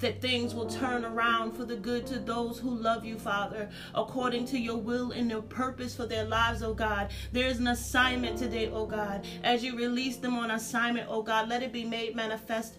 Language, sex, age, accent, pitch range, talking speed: English, female, 30-49, American, 225-255 Hz, 215 wpm